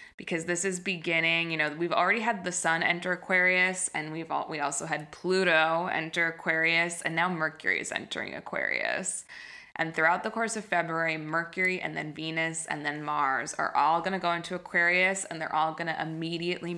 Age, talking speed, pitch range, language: 20-39, 195 wpm, 160-190 Hz, English